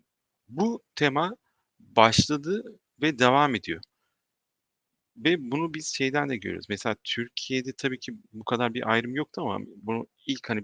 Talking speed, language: 140 wpm, Turkish